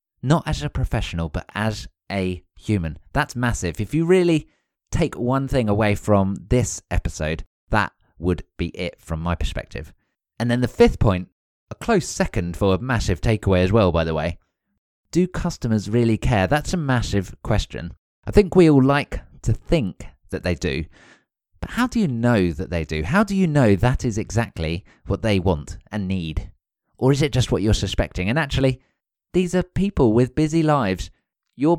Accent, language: British, English